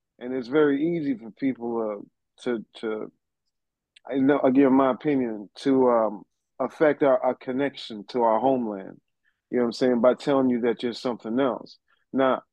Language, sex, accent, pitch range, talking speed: English, male, American, 115-140 Hz, 170 wpm